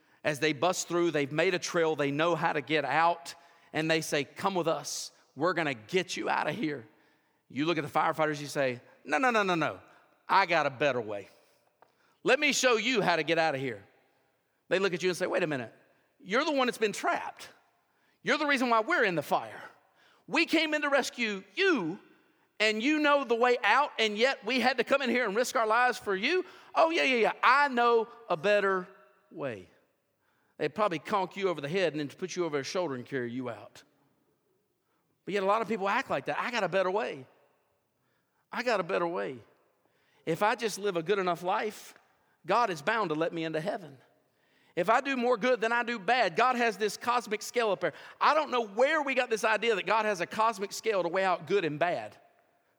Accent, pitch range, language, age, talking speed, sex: American, 170-245 Hz, English, 40-59, 230 wpm, male